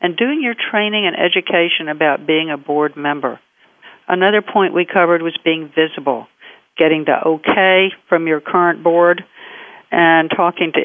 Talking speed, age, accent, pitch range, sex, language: 155 wpm, 60-79, American, 155-195 Hz, female, English